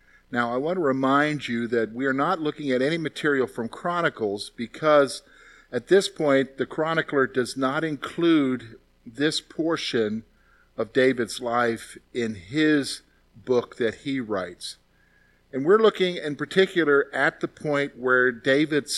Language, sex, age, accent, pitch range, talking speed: English, male, 50-69, American, 120-150 Hz, 145 wpm